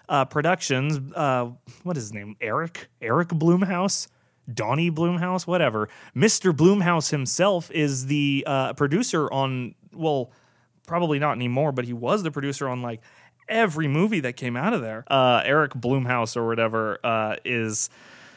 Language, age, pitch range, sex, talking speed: English, 30-49, 135-185 Hz, male, 150 wpm